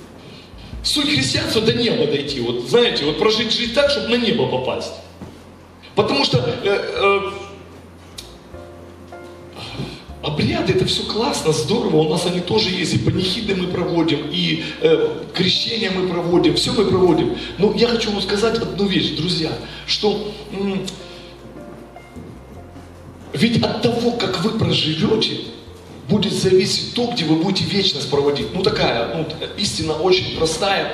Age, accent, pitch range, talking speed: 40-59, native, 130-220 Hz, 140 wpm